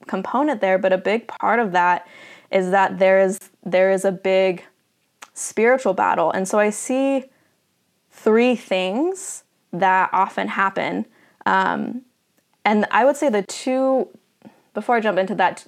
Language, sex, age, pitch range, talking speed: English, female, 20-39, 185-215 Hz, 150 wpm